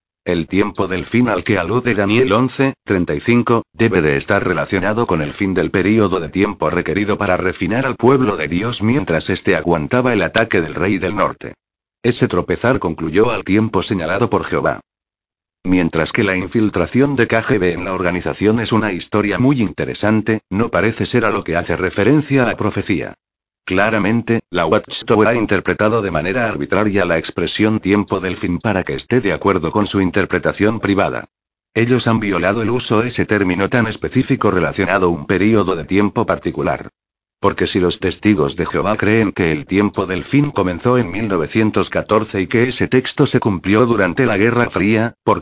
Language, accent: English, Spanish